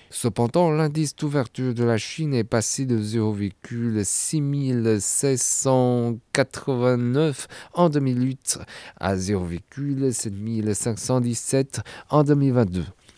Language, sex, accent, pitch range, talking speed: French, male, French, 110-135 Hz, 70 wpm